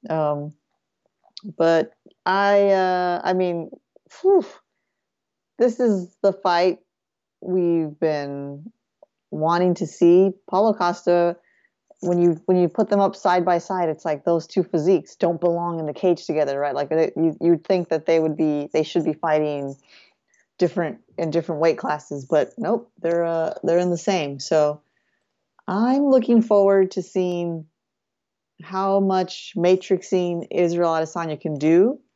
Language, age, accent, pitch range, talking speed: English, 30-49, American, 155-185 Hz, 145 wpm